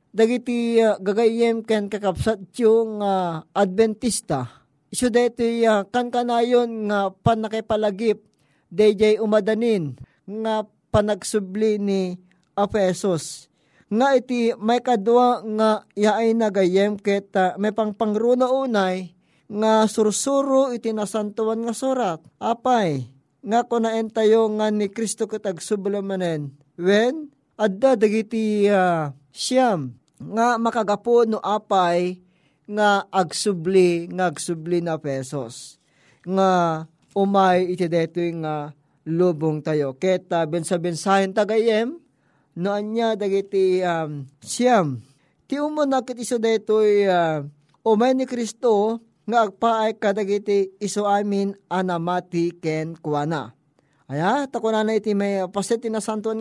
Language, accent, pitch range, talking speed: Filipino, native, 175-225 Hz, 110 wpm